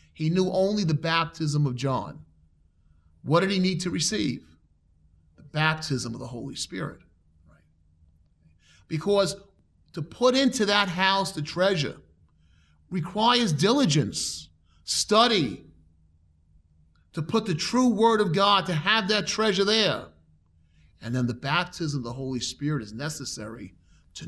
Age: 30-49